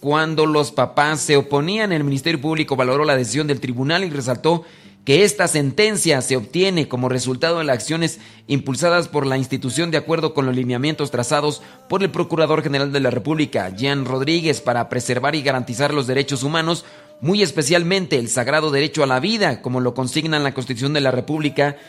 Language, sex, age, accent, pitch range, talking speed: Spanish, male, 40-59, Mexican, 130-160 Hz, 185 wpm